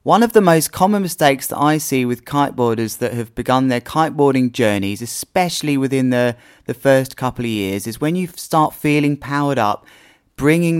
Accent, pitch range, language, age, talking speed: British, 125-165 Hz, English, 30-49, 185 wpm